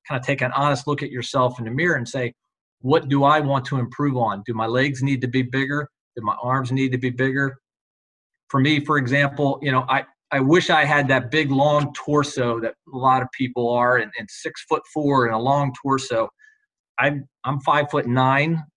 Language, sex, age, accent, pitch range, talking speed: English, male, 40-59, American, 125-145 Hz, 215 wpm